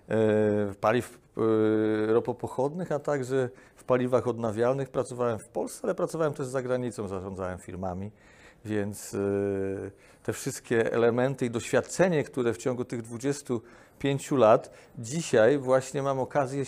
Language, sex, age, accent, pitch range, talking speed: Polish, male, 40-59, native, 110-135 Hz, 135 wpm